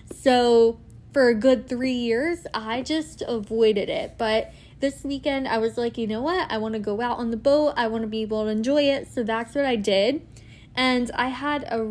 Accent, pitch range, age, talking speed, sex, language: American, 220-250 Hz, 10-29, 220 wpm, female, English